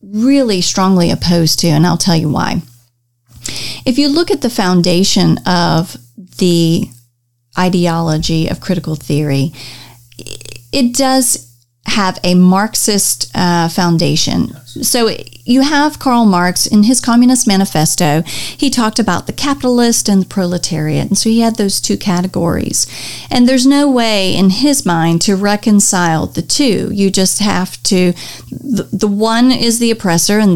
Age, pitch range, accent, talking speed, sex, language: 40-59, 165-220 Hz, American, 145 wpm, female, English